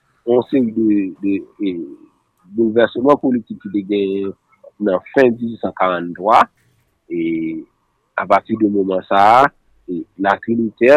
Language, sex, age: French, male, 50-69